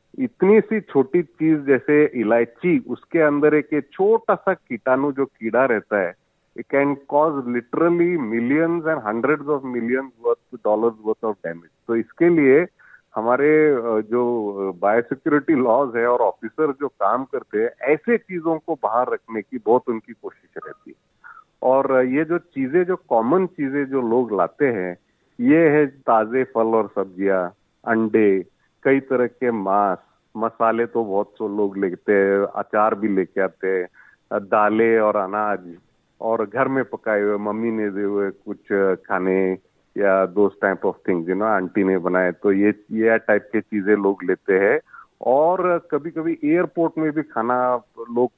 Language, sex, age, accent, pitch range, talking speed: Hindi, male, 40-59, native, 105-150 Hz, 160 wpm